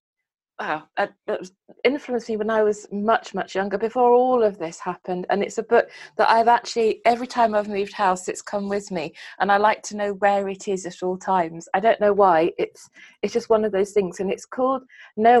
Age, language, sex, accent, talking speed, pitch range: 30-49, English, female, British, 220 wpm, 185-220 Hz